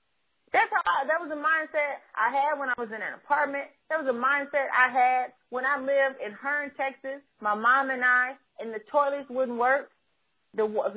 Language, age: English, 30-49